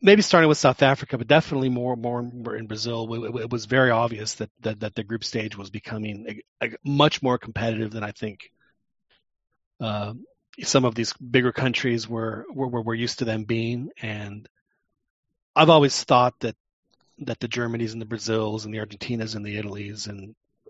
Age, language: 30-49, English